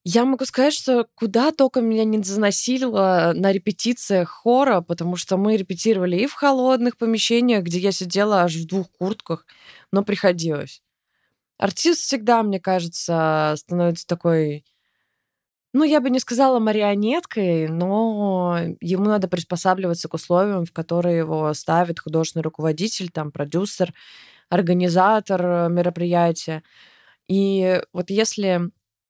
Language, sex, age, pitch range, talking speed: Russian, female, 20-39, 160-200 Hz, 125 wpm